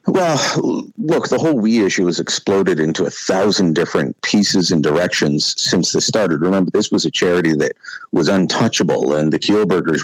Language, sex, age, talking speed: English, male, 50-69, 175 wpm